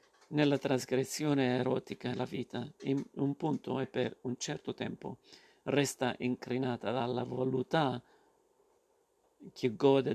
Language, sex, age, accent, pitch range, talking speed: Italian, male, 50-69, native, 125-135 Hz, 110 wpm